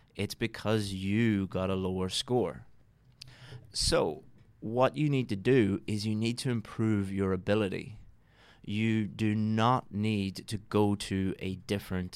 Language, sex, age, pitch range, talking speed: English, male, 20-39, 95-110 Hz, 145 wpm